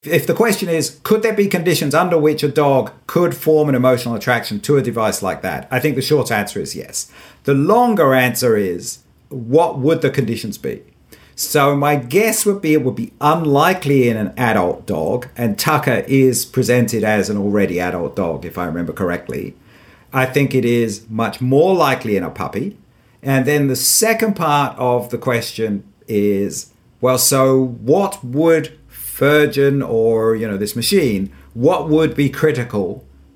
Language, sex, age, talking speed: English, male, 50-69, 175 wpm